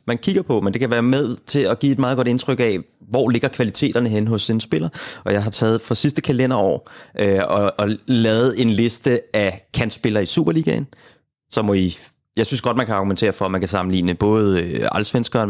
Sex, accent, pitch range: male, native, 105-125 Hz